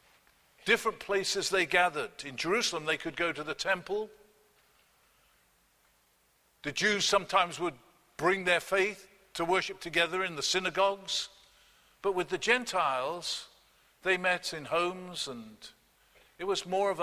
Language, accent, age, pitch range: English, British, 50-69, 175-215 Hz